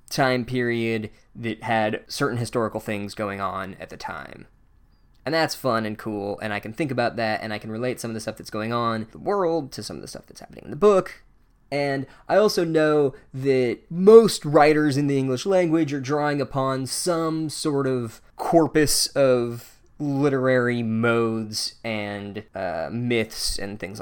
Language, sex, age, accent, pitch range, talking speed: English, male, 10-29, American, 110-145 Hz, 180 wpm